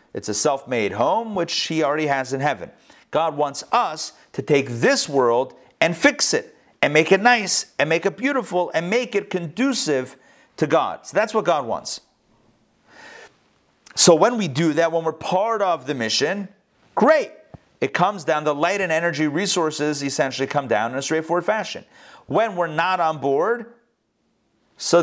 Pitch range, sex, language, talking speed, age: 150-210 Hz, male, English, 175 wpm, 40-59